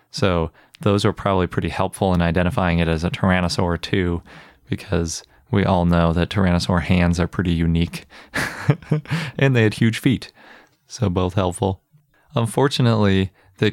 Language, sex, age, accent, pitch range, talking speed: English, male, 30-49, American, 90-110 Hz, 145 wpm